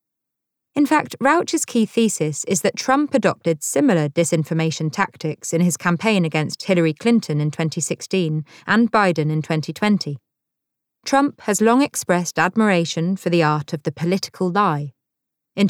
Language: English